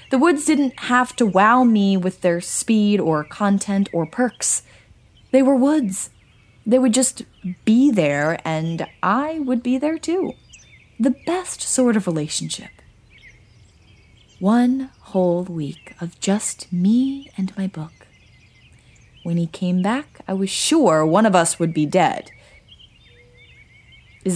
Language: English